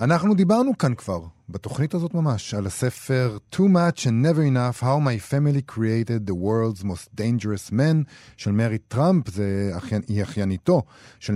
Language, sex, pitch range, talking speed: Hebrew, male, 105-140 Hz, 160 wpm